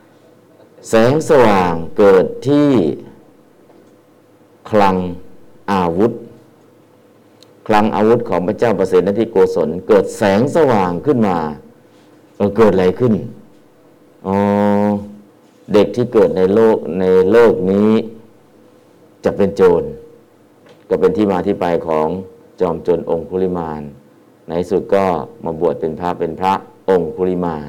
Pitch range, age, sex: 90-120 Hz, 50-69, male